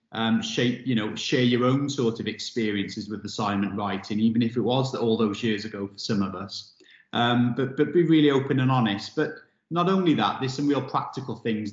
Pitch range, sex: 110-130 Hz, male